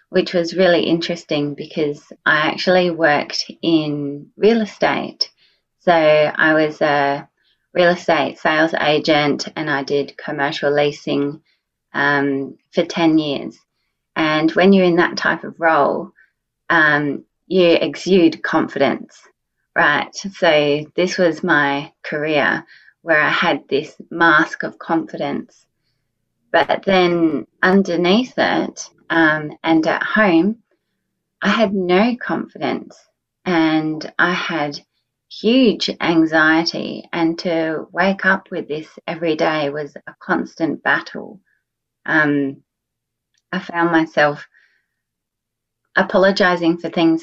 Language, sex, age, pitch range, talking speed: English, female, 20-39, 150-175 Hz, 115 wpm